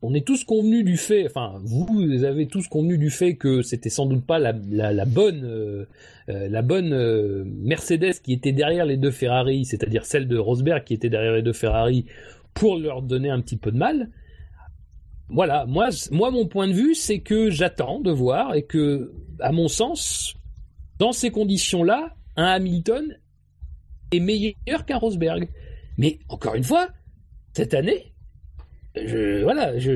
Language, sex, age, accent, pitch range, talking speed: French, male, 40-59, French, 110-180 Hz, 175 wpm